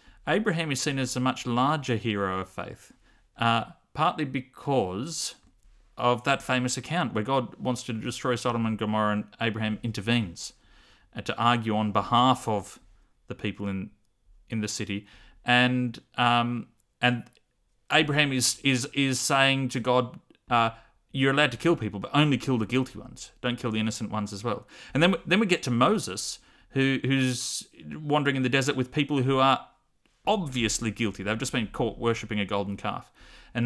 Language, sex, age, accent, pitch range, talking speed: English, male, 30-49, Australian, 110-135 Hz, 175 wpm